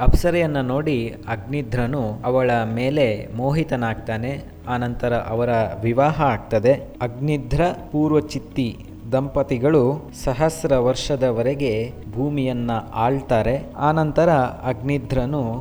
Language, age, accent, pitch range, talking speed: Kannada, 20-39, native, 115-140 Hz, 80 wpm